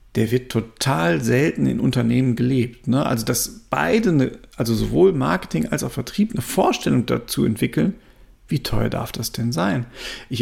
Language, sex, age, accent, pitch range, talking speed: German, male, 40-59, German, 120-155 Hz, 165 wpm